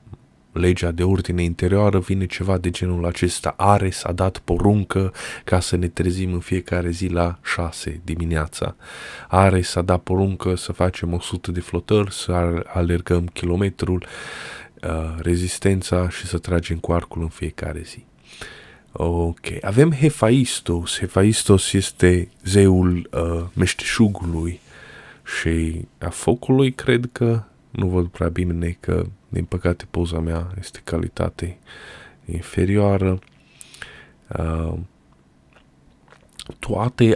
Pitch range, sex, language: 85-95 Hz, male, Romanian